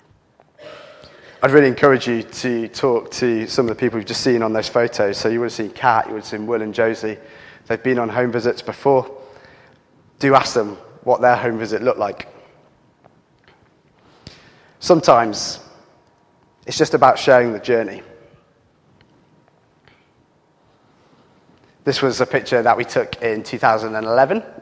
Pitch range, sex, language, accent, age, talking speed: 115-135 Hz, male, English, British, 30-49, 150 wpm